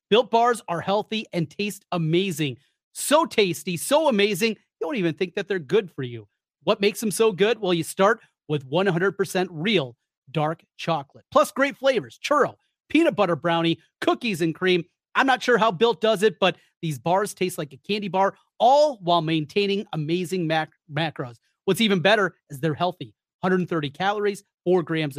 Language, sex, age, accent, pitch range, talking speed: English, male, 30-49, American, 165-220 Hz, 175 wpm